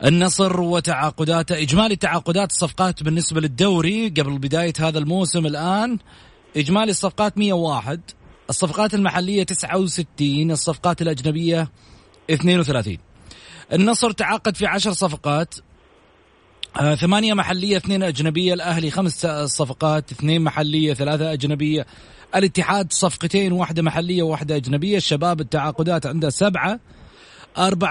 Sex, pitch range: male, 155-185 Hz